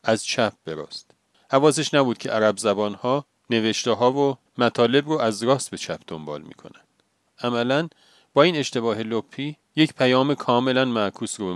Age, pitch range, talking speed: 40-59, 105-135 Hz, 155 wpm